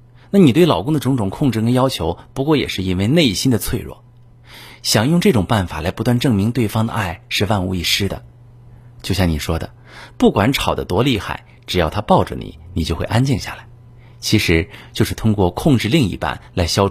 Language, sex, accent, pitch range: Chinese, male, native, 90-120 Hz